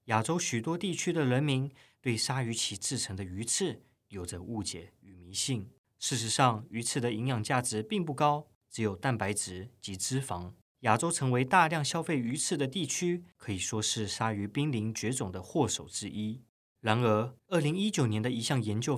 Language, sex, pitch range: Chinese, male, 105-135 Hz